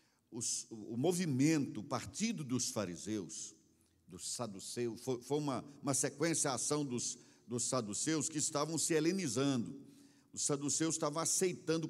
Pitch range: 145-215 Hz